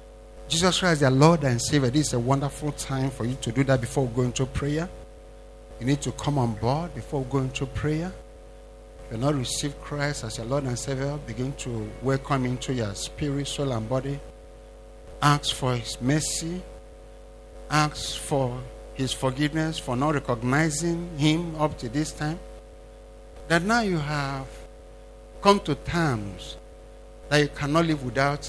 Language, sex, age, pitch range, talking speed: English, male, 50-69, 110-150 Hz, 165 wpm